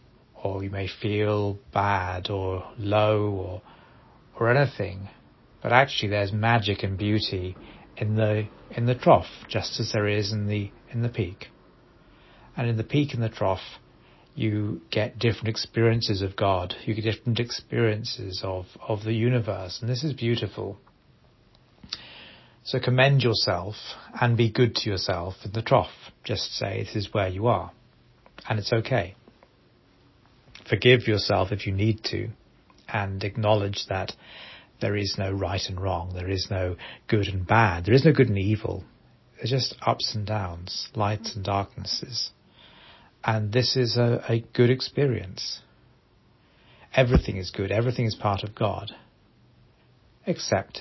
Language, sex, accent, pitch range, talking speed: English, male, British, 100-120 Hz, 150 wpm